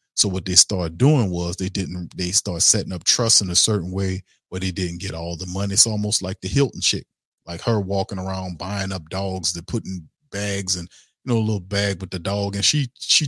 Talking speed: 235 wpm